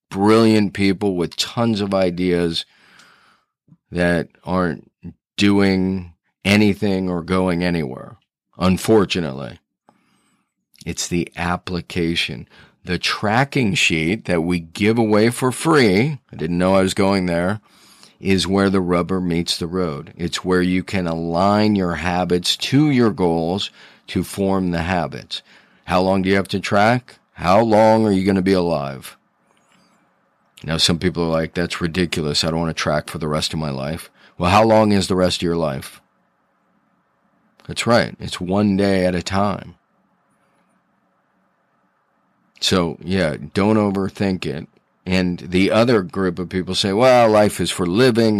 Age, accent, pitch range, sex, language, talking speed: 40-59, American, 85-100 Hz, male, English, 150 wpm